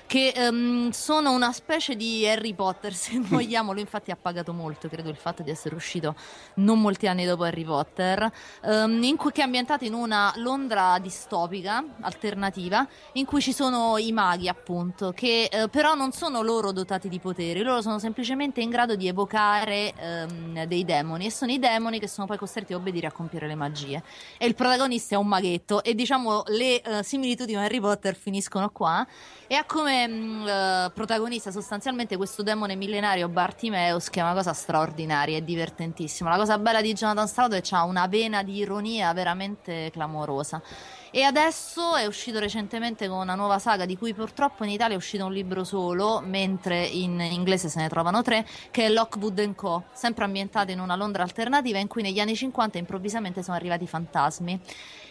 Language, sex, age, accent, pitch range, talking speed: Italian, female, 20-39, native, 180-230 Hz, 185 wpm